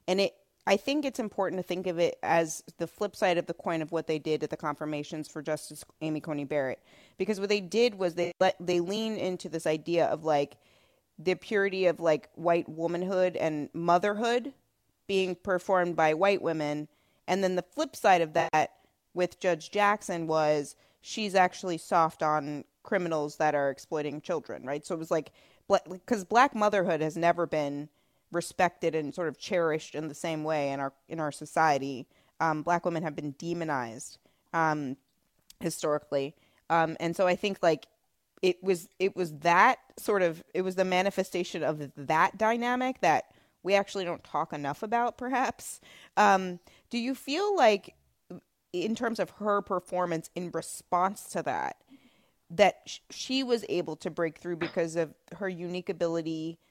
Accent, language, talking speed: American, English, 170 wpm